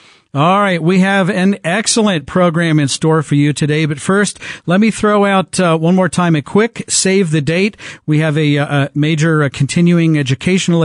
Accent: American